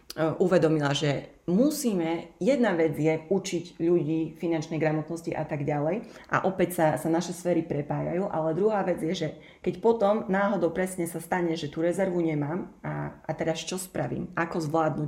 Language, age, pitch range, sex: Slovak, 30-49, 155-185 Hz, female